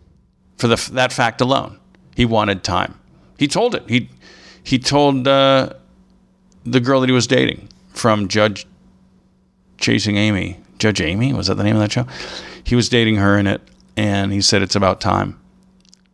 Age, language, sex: 50-69, English, male